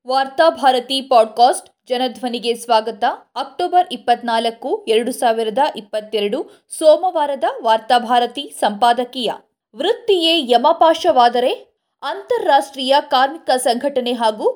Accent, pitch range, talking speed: native, 240-315 Hz, 75 wpm